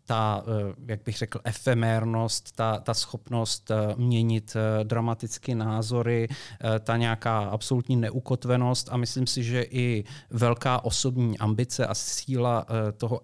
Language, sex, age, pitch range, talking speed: Czech, male, 30-49, 110-120 Hz, 120 wpm